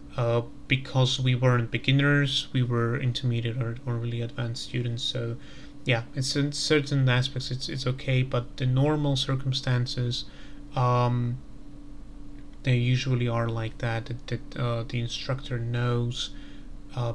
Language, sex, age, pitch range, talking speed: Slovak, male, 30-49, 120-135 Hz, 135 wpm